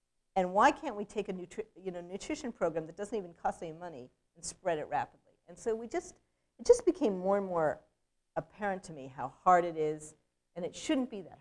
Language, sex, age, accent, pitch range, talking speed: English, female, 50-69, American, 155-210 Hz, 225 wpm